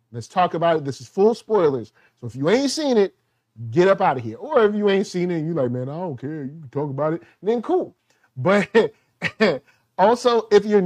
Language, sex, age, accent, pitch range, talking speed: English, male, 30-49, American, 135-190 Hz, 240 wpm